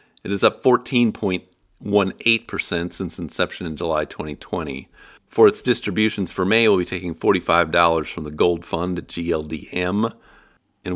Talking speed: 130 wpm